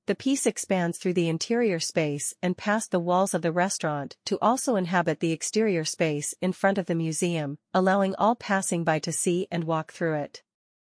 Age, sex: 40-59, female